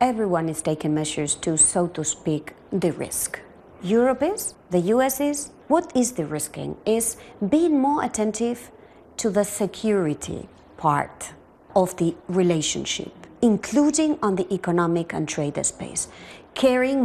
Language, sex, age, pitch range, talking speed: English, female, 30-49, 185-255 Hz, 135 wpm